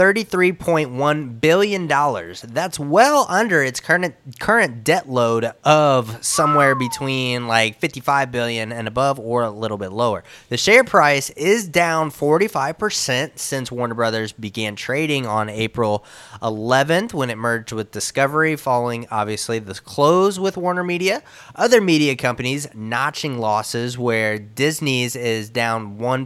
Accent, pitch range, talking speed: American, 115-155 Hz, 135 wpm